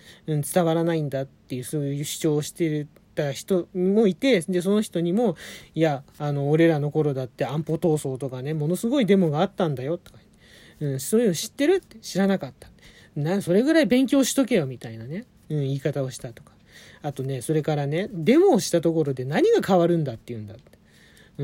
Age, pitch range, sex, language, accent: 40-59, 140-200 Hz, male, Japanese, native